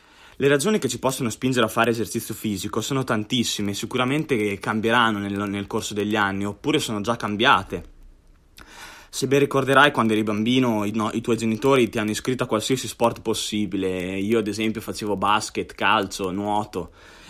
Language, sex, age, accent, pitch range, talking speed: Italian, male, 20-39, native, 105-125 Hz, 165 wpm